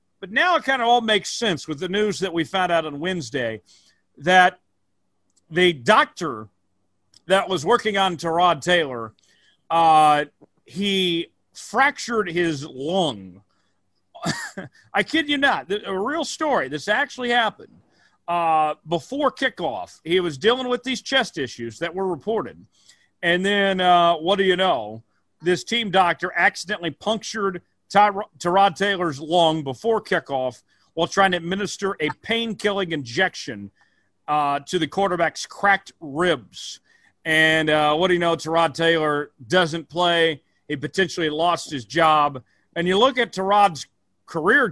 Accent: American